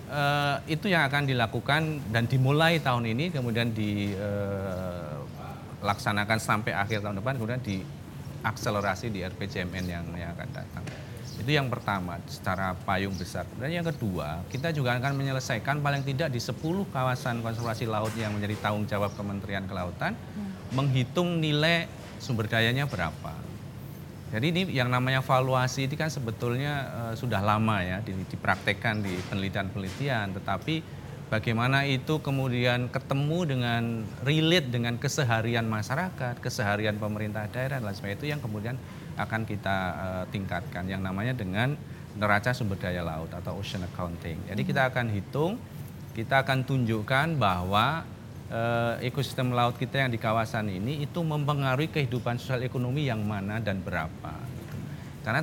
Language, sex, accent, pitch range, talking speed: Indonesian, male, native, 105-140 Hz, 135 wpm